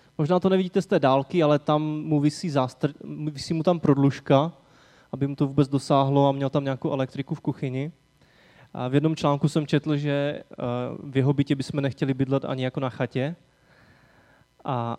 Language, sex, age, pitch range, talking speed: Czech, male, 20-39, 130-165 Hz, 180 wpm